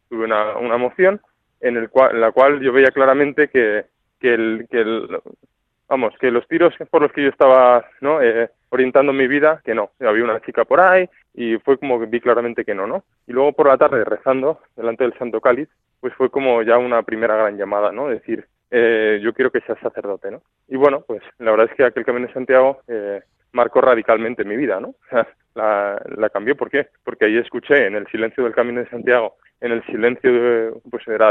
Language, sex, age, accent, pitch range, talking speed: Spanish, male, 20-39, Spanish, 115-140 Hz, 220 wpm